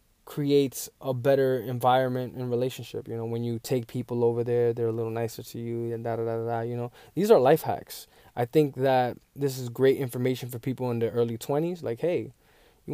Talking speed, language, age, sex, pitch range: 215 wpm, English, 20-39, male, 120-145 Hz